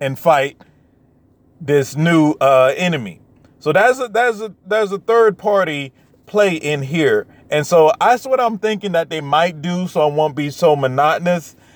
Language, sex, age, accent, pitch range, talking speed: English, male, 30-49, American, 135-175 Hz, 175 wpm